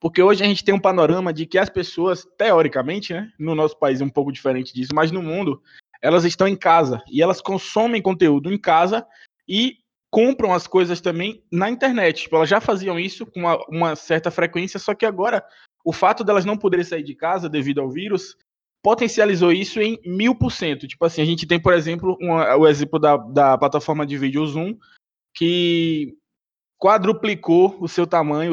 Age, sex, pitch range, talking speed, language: 20-39, male, 165-210 Hz, 195 wpm, Portuguese